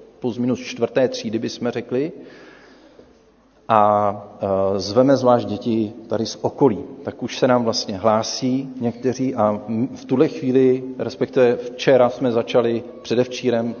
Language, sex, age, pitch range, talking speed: Czech, male, 40-59, 105-125 Hz, 125 wpm